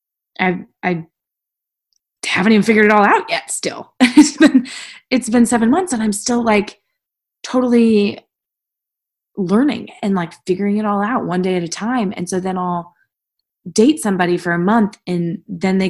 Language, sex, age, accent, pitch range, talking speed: English, female, 20-39, American, 170-230 Hz, 170 wpm